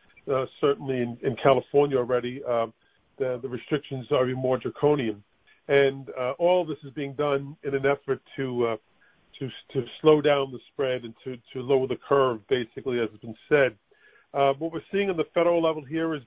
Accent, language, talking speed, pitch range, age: American, English, 200 wpm, 130-145 Hz, 40-59